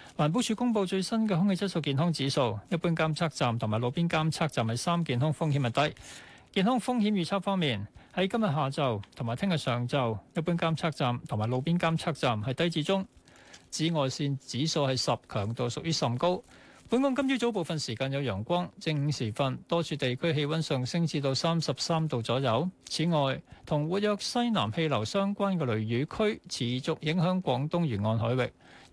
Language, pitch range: Chinese, 125-175 Hz